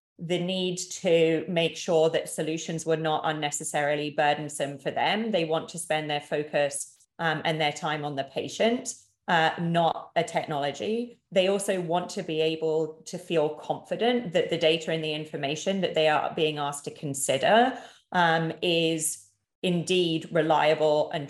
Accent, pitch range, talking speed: British, 155-185 Hz, 160 wpm